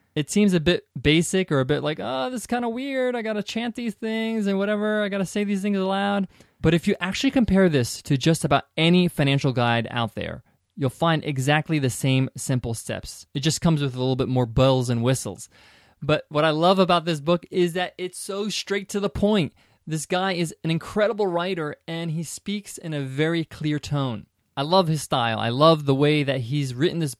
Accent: American